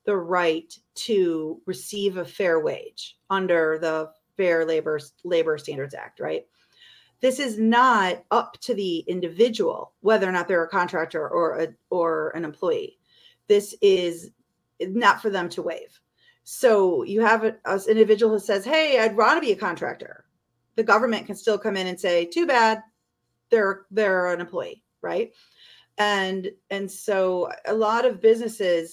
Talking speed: 155 wpm